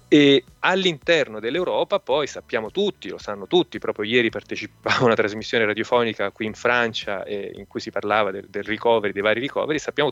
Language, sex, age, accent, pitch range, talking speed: Italian, male, 30-49, native, 105-135 Hz, 185 wpm